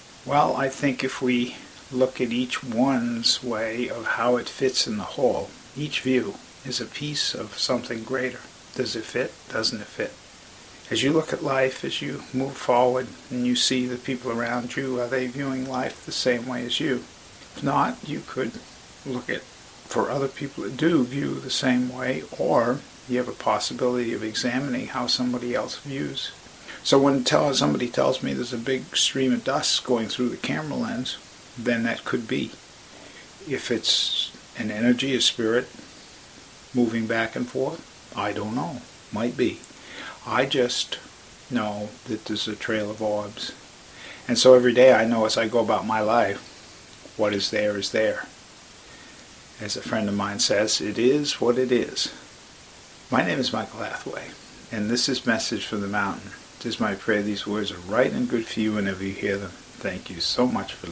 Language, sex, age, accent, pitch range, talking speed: English, male, 50-69, American, 110-130 Hz, 185 wpm